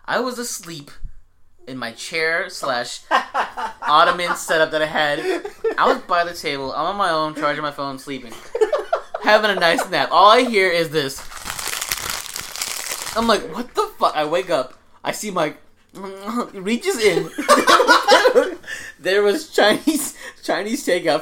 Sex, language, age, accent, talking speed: male, English, 20-39, American, 145 wpm